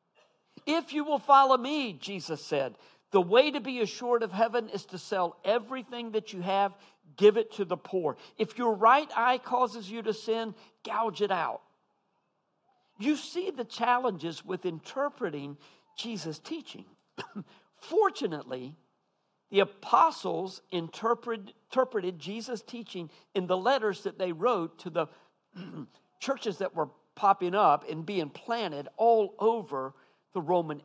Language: English